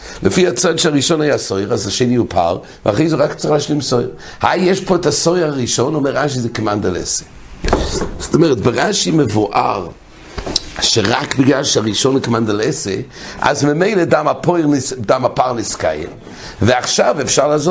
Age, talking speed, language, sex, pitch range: 60-79, 125 wpm, English, male, 100-150 Hz